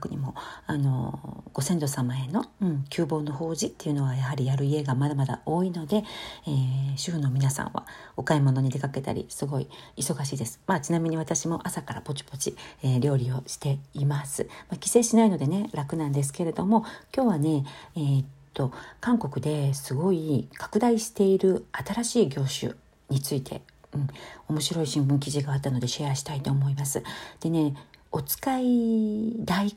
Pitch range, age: 140-195 Hz, 40-59